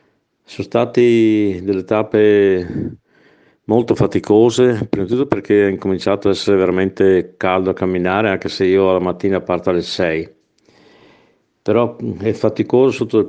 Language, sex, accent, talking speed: Italian, male, native, 140 wpm